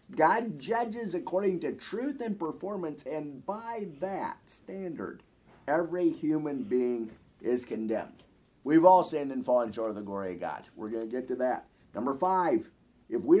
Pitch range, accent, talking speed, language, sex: 110-150 Hz, American, 165 wpm, English, male